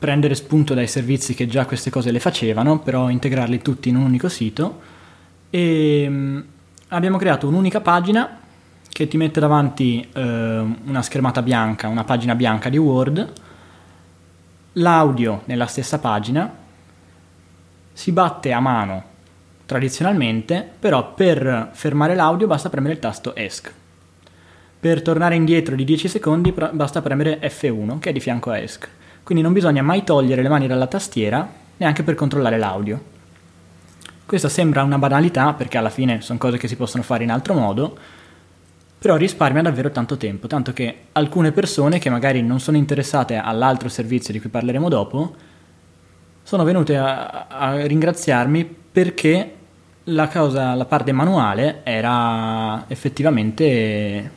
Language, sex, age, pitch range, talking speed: Italian, male, 20-39, 110-155 Hz, 140 wpm